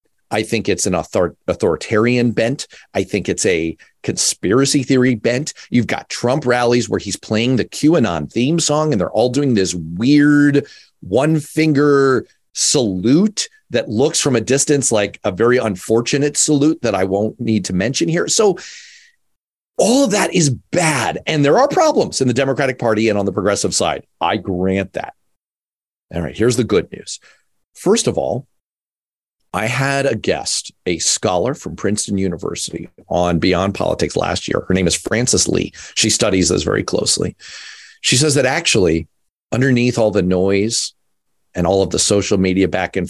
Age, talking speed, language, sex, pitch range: 40-59, 170 wpm, English, male, 95-140 Hz